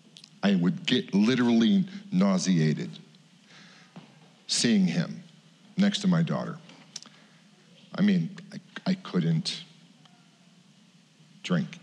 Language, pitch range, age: English, 180-200 Hz, 50-69